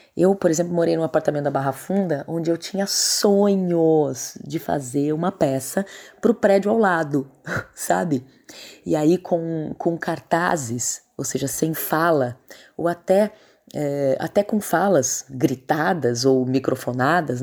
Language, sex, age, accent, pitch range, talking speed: Portuguese, female, 20-39, Brazilian, 140-205 Hz, 135 wpm